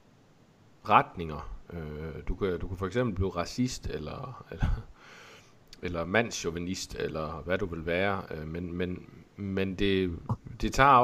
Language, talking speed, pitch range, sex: Danish, 130 wpm, 85-110 Hz, male